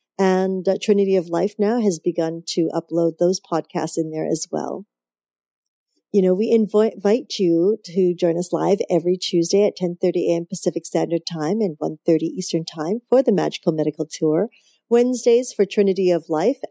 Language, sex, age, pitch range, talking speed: English, female, 40-59, 170-215 Hz, 170 wpm